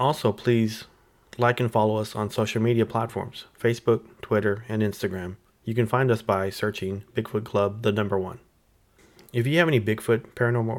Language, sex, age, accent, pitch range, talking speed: English, male, 30-49, American, 105-115 Hz, 170 wpm